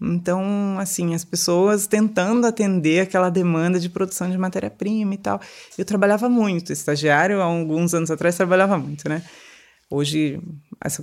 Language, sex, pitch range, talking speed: Portuguese, female, 155-215 Hz, 145 wpm